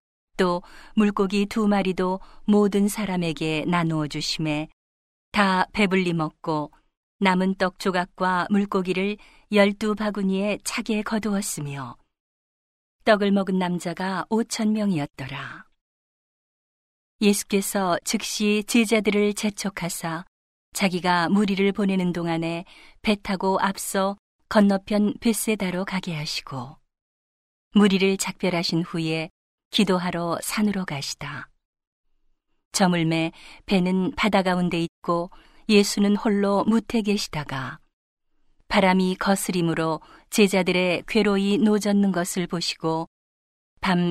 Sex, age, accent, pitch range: female, 40-59, native, 165-205 Hz